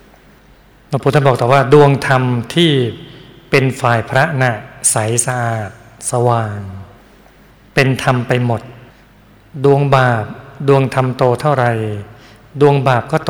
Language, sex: Thai, male